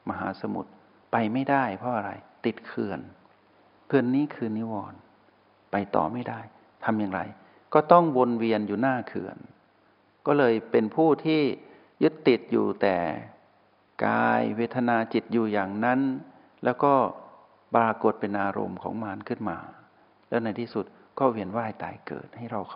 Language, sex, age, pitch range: Thai, male, 60-79, 100-125 Hz